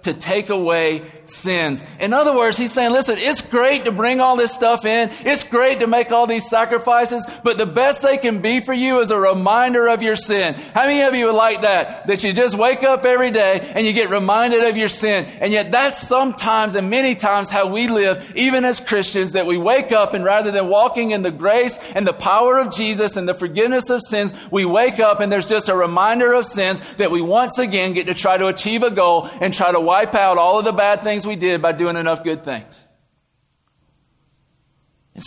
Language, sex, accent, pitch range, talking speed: English, male, American, 190-245 Hz, 225 wpm